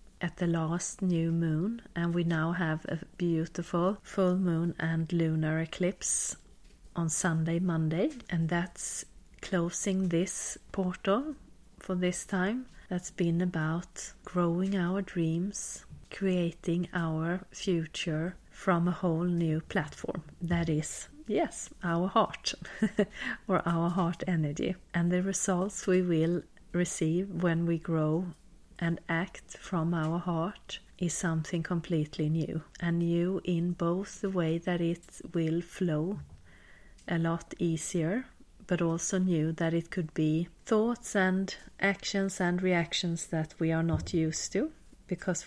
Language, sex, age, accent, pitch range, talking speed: English, female, 40-59, Swedish, 165-185 Hz, 130 wpm